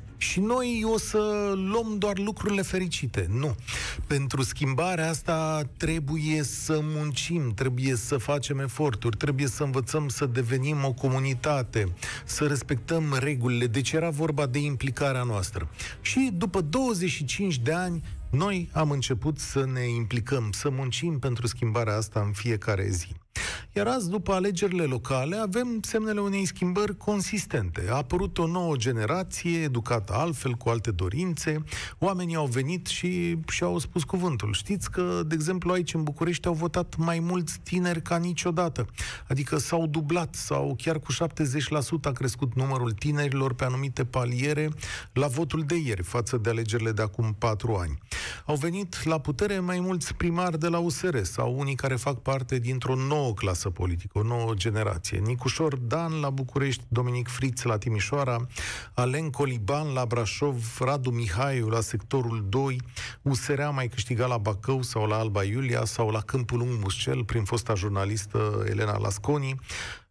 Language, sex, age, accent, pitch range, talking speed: Romanian, male, 40-59, native, 115-165 Hz, 150 wpm